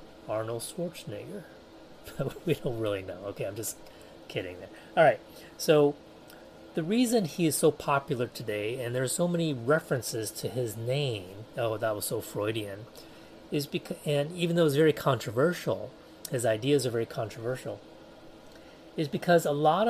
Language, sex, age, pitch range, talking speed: English, male, 30-49, 115-155 Hz, 155 wpm